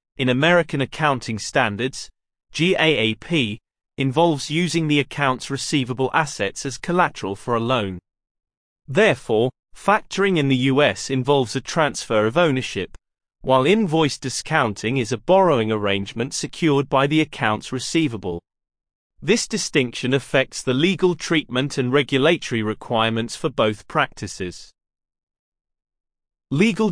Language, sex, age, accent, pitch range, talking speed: English, male, 30-49, British, 115-160 Hz, 115 wpm